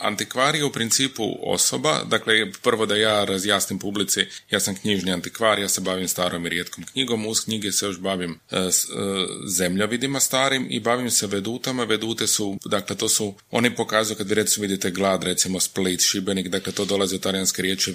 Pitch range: 95-110 Hz